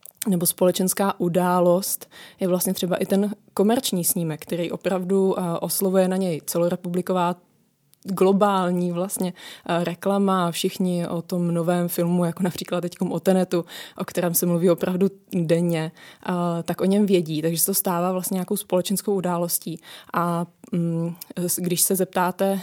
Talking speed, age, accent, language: 135 wpm, 20-39, native, Czech